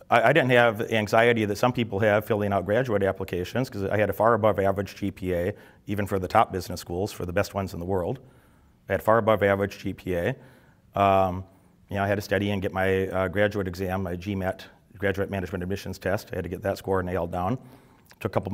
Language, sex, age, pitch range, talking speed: English, male, 30-49, 100-120 Hz, 225 wpm